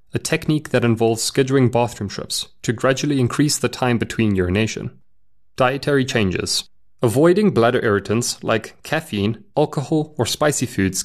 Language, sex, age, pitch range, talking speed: English, male, 30-49, 105-140 Hz, 135 wpm